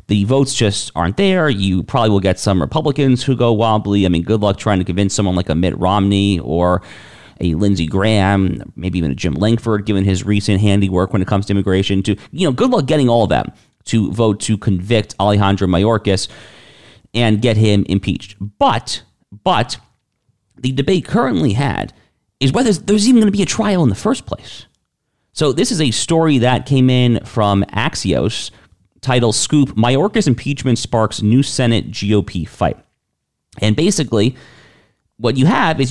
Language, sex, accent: English, male, American